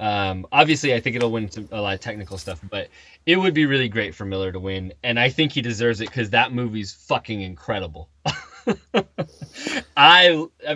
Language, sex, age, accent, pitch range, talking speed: English, male, 20-39, American, 110-165 Hz, 190 wpm